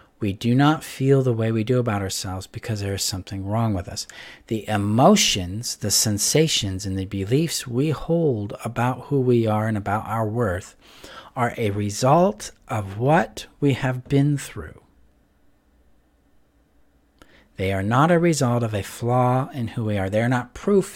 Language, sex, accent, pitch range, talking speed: English, male, American, 100-130 Hz, 170 wpm